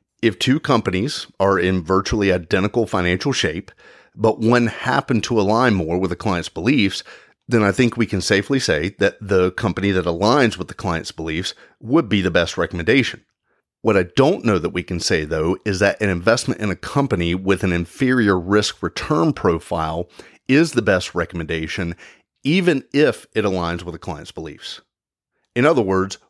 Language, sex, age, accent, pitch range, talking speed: English, male, 30-49, American, 90-120 Hz, 175 wpm